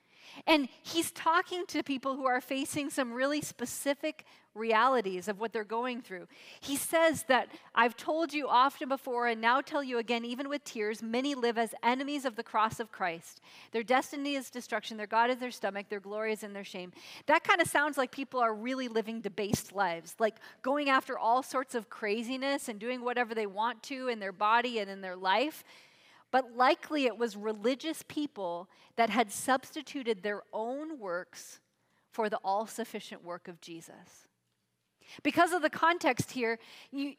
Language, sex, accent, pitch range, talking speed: English, female, American, 220-285 Hz, 180 wpm